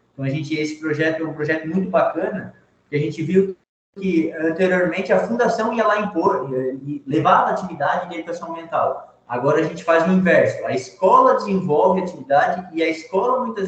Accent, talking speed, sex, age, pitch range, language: Brazilian, 190 wpm, male, 20-39, 145-180 Hz, Portuguese